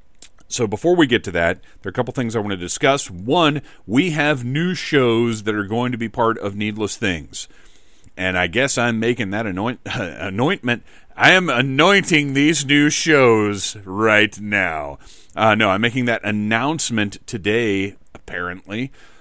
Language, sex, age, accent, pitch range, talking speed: English, male, 30-49, American, 95-120 Hz, 160 wpm